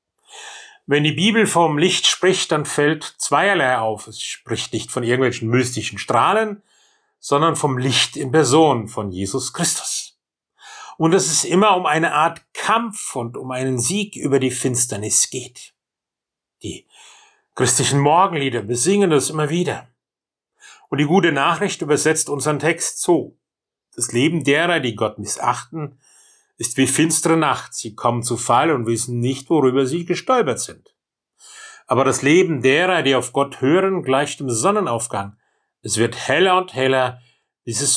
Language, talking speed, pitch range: German, 150 wpm, 125-185 Hz